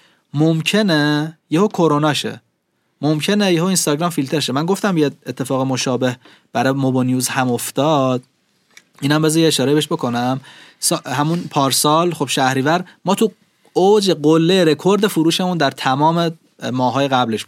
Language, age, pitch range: Persian, 30-49, 135-175 Hz